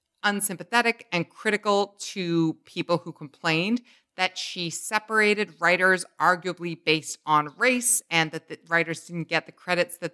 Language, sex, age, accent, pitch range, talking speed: English, female, 40-59, American, 165-205 Hz, 140 wpm